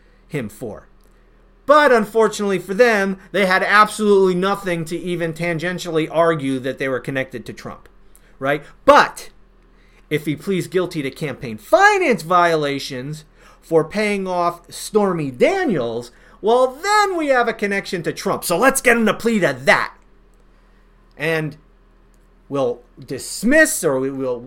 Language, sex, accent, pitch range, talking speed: English, male, American, 145-240 Hz, 140 wpm